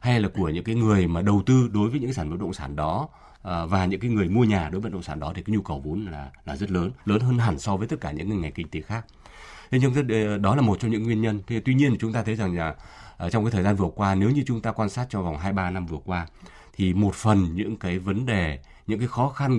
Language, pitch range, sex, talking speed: Vietnamese, 85-115 Hz, male, 295 wpm